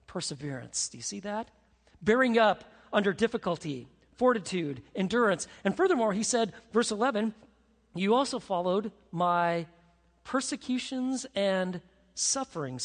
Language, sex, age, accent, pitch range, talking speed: English, male, 40-59, American, 170-235 Hz, 110 wpm